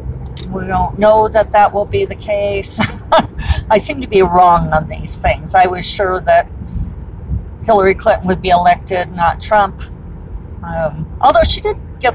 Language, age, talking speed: English, 40-59, 165 wpm